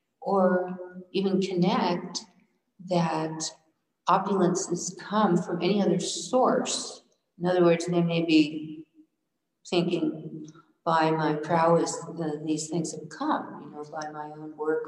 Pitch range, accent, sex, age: 150-180 Hz, American, female, 50-69